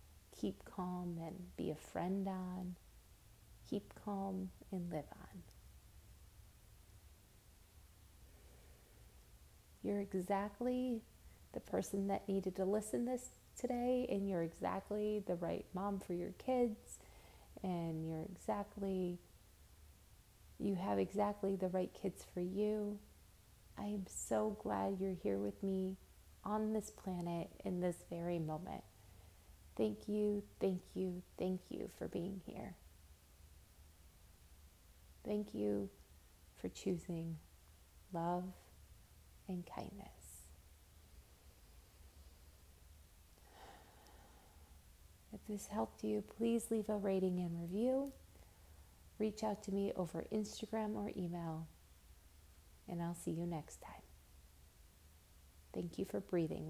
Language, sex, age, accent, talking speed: English, female, 30-49, American, 105 wpm